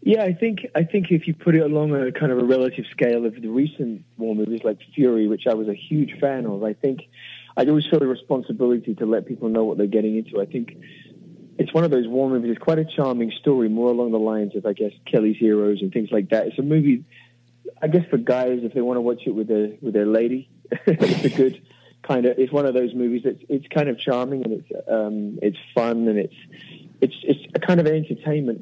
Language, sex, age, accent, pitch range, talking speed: English, male, 30-49, British, 110-135 Hz, 245 wpm